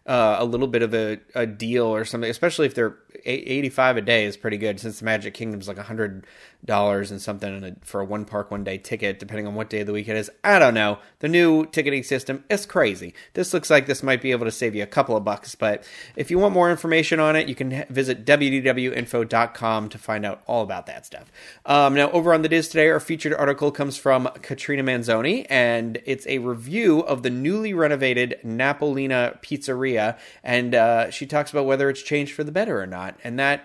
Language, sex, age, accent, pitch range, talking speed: English, male, 30-49, American, 110-140 Hz, 225 wpm